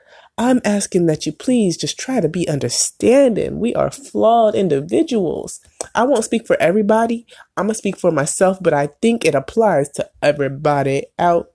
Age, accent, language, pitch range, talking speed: 30-49, American, English, 160-230 Hz, 170 wpm